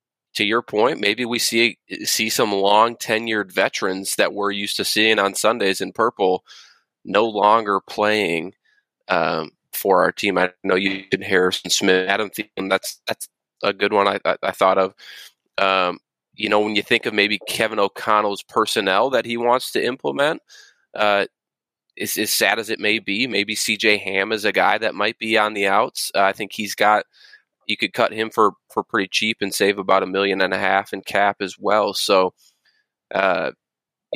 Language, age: English, 20-39